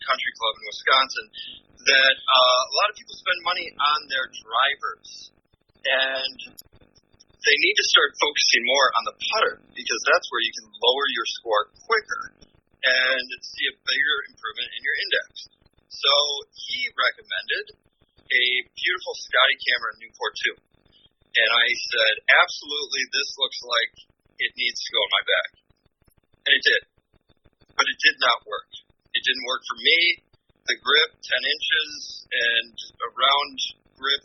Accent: American